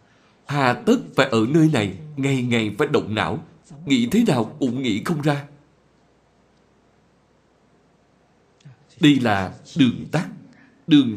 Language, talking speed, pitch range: Vietnamese, 125 wpm, 115-175 Hz